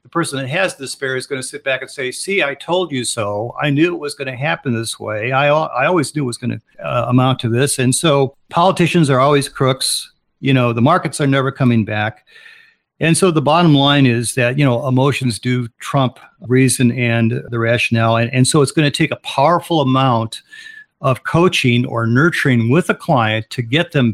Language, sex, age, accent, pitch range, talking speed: English, male, 50-69, American, 120-150 Hz, 220 wpm